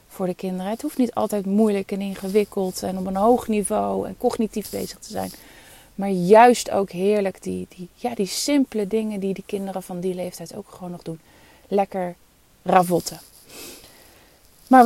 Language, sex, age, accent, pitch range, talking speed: Dutch, female, 30-49, Dutch, 195-250 Hz, 175 wpm